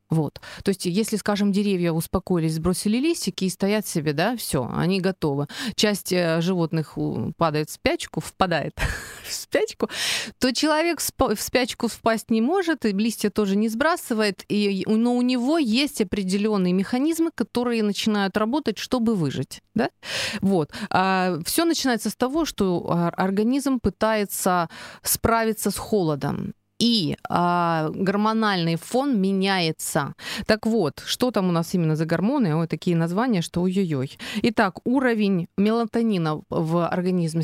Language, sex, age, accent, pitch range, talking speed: Ukrainian, female, 30-49, native, 180-235 Hz, 135 wpm